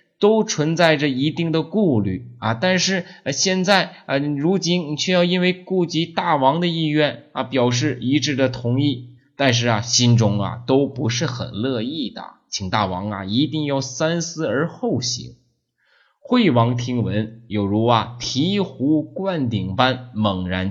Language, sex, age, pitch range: Chinese, male, 20-39, 105-150 Hz